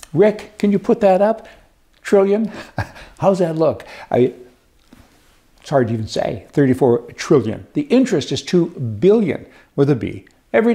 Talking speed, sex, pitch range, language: 145 wpm, male, 140-190 Hz, English